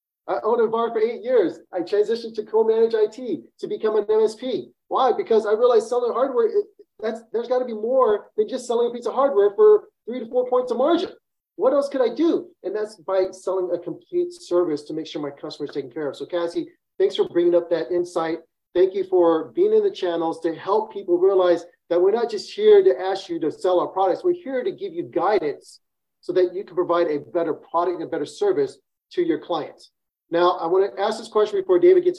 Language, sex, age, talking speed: English, male, 30-49, 230 wpm